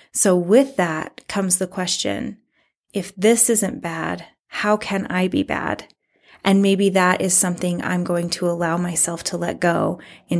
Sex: female